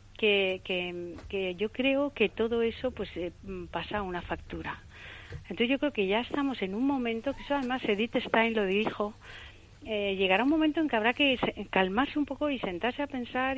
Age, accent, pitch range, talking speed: 40-59, Spanish, 185-240 Hz, 200 wpm